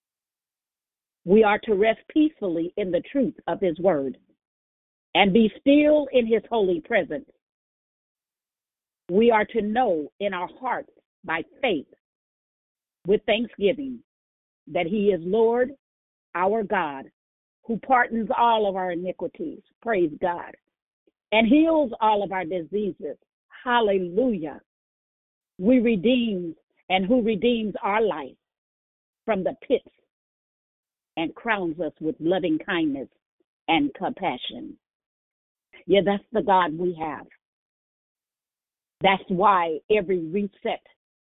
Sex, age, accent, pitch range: female, 50-69, American, 170-235 Hz